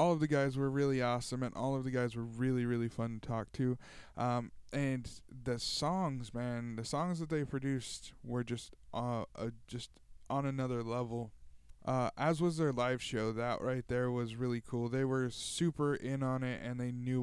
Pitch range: 115-135 Hz